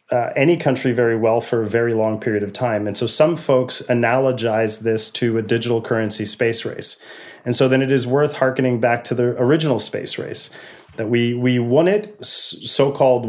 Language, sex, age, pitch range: English, male, 30-49, 115-130 Hz